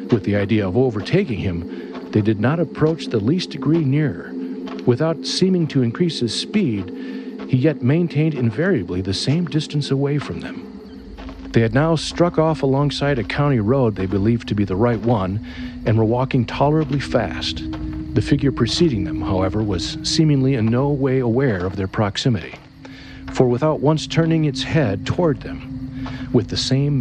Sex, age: male, 50-69